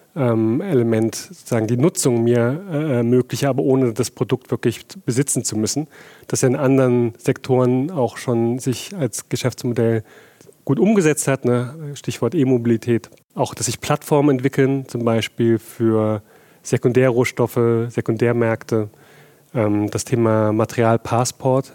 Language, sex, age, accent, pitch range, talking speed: German, male, 30-49, German, 120-140 Hz, 125 wpm